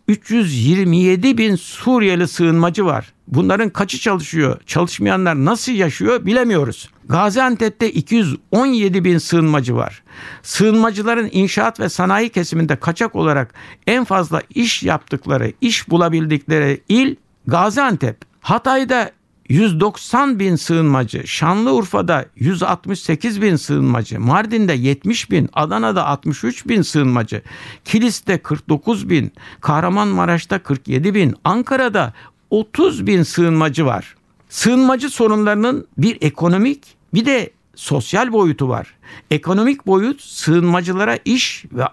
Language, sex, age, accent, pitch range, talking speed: Turkish, male, 60-79, native, 150-220 Hz, 105 wpm